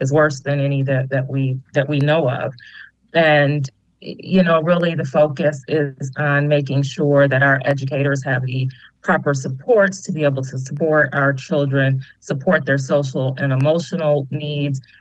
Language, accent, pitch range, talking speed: English, American, 135-150 Hz, 165 wpm